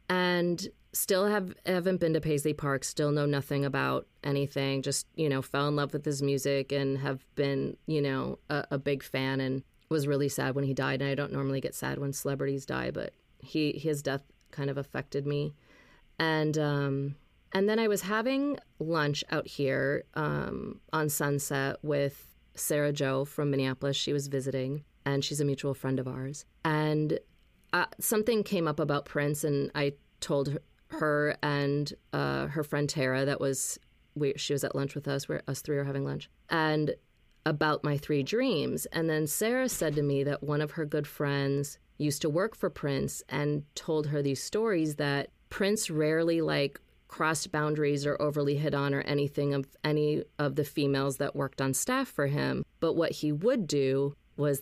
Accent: American